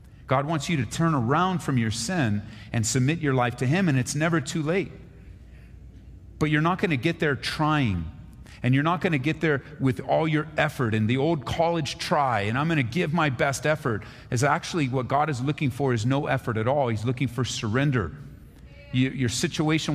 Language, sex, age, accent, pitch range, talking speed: English, male, 40-59, American, 95-140 Hz, 210 wpm